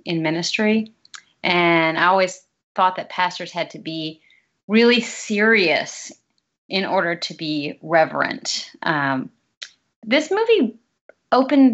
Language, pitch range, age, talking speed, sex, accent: English, 170-220 Hz, 30-49, 110 wpm, female, American